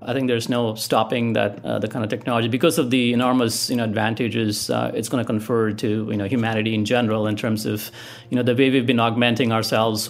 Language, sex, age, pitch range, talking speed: English, male, 30-49, 110-125 Hz, 240 wpm